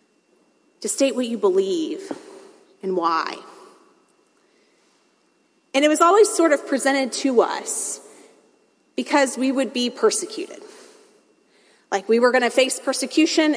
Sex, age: female, 30-49